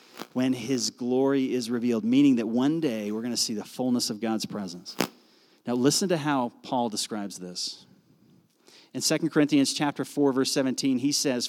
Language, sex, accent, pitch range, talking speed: English, male, American, 110-145 Hz, 180 wpm